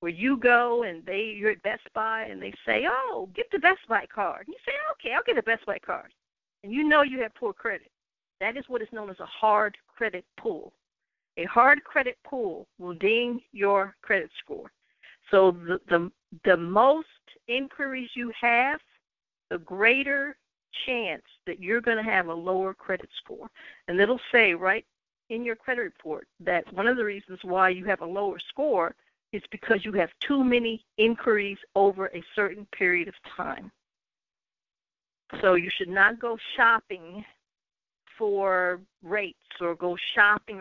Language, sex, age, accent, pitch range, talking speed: English, female, 60-79, American, 195-245 Hz, 170 wpm